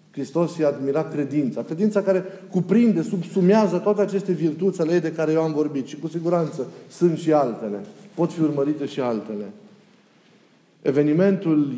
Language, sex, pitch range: Romanian, male, 145-180 Hz